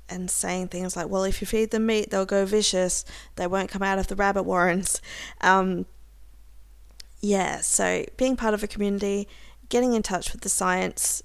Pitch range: 180-210 Hz